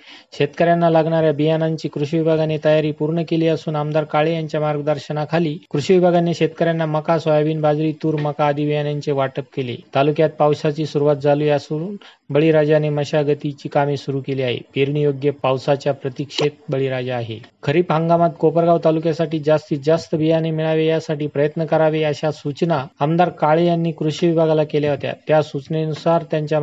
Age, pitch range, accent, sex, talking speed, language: 30-49, 150-165 Hz, native, male, 145 wpm, Marathi